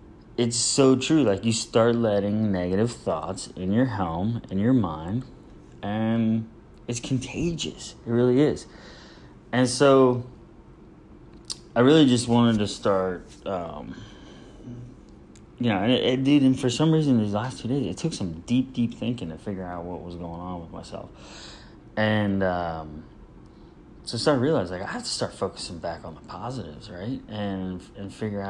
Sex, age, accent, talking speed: male, 30-49, American, 165 wpm